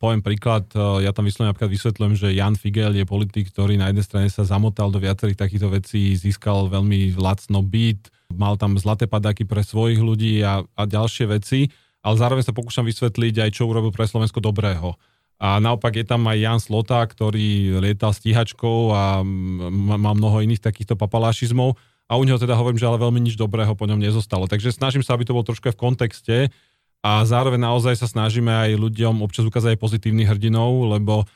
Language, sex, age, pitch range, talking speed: Slovak, male, 30-49, 105-120 Hz, 190 wpm